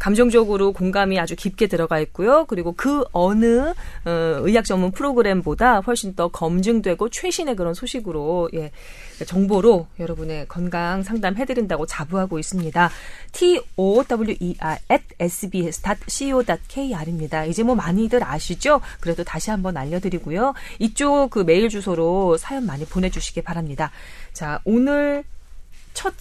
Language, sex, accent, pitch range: Korean, female, native, 165-240 Hz